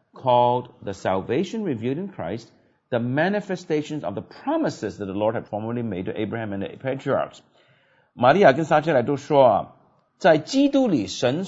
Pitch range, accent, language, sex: 105-155 Hz, native, Chinese, male